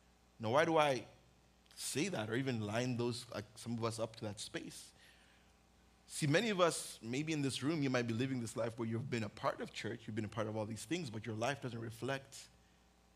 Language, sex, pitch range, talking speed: English, male, 105-170 Hz, 235 wpm